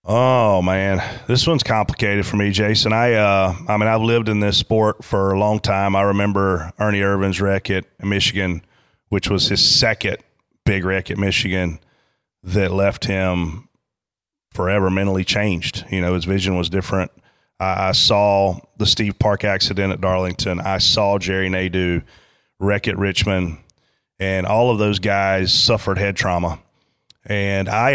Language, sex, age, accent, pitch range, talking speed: English, male, 30-49, American, 95-110 Hz, 155 wpm